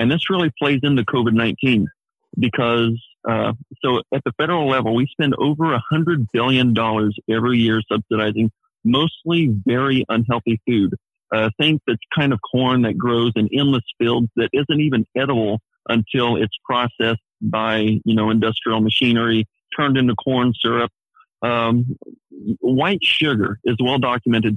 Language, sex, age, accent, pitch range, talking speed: English, male, 50-69, American, 115-140 Hz, 150 wpm